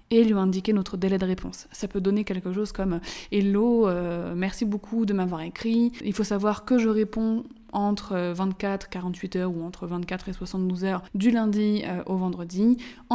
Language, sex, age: French, female, 20-39